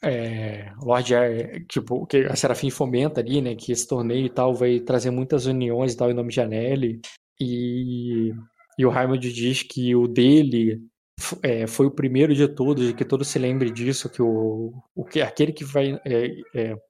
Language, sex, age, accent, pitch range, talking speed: Portuguese, male, 20-39, Brazilian, 120-140 Hz, 190 wpm